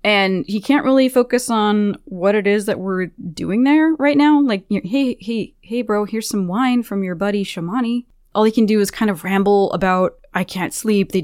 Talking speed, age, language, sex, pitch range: 215 wpm, 20-39, English, female, 180-225 Hz